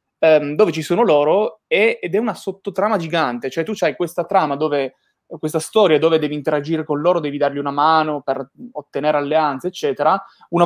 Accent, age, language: native, 20-39, Italian